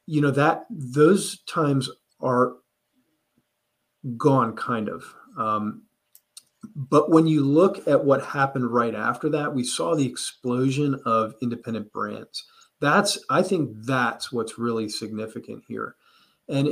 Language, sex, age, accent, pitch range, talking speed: English, male, 40-59, American, 115-145 Hz, 130 wpm